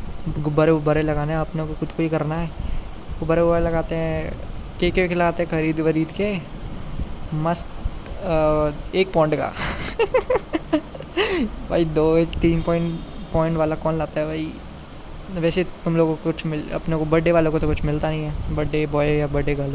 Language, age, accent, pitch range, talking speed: Hindi, 20-39, native, 155-180 Hz, 170 wpm